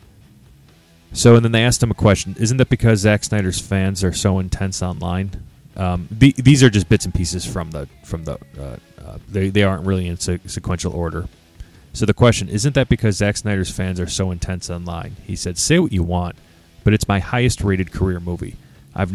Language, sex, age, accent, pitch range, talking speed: English, male, 30-49, American, 90-105 Hz, 210 wpm